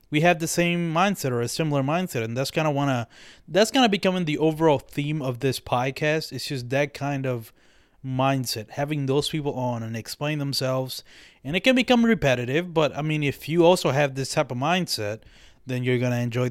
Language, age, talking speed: English, 20-39, 200 wpm